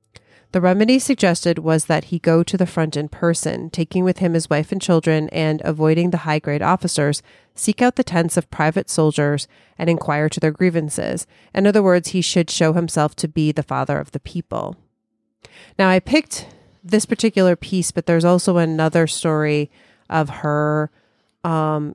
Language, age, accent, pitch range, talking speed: English, 30-49, American, 155-180 Hz, 180 wpm